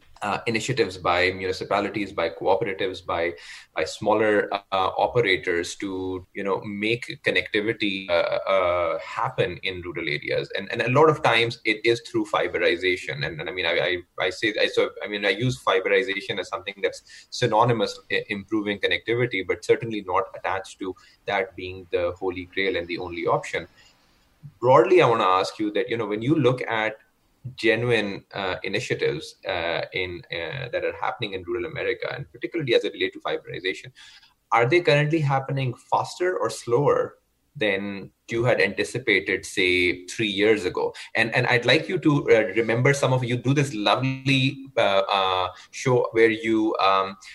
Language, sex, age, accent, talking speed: English, male, 20-39, Indian, 170 wpm